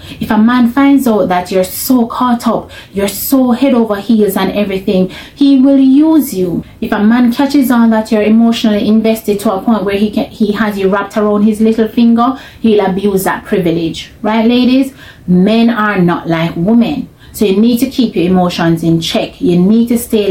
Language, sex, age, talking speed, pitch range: English, female, 30-49, 200 wpm, 200-265 Hz